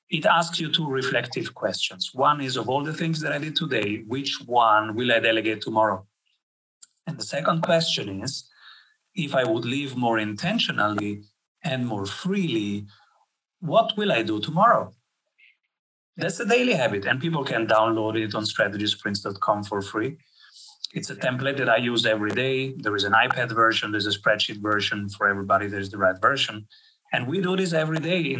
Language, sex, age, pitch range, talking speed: English, male, 30-49, 110-155 Hz, 180 wpm